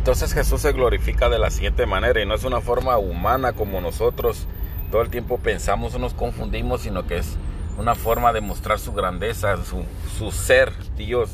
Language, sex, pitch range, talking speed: English, male, 75-110 Hz, 195 wpm